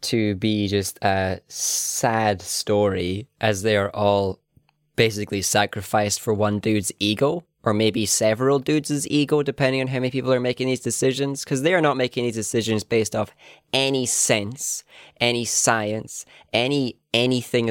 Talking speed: 155 wpm